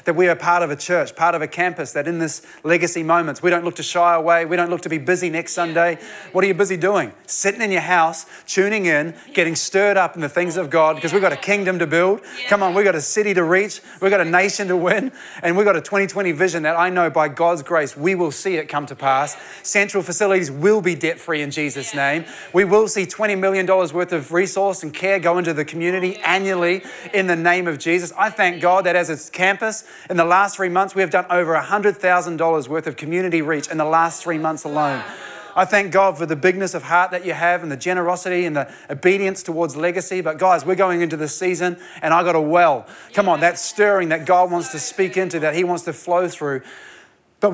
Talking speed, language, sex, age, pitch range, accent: 245 wpm, English, male, 30-49, 165-190 Hz, Australian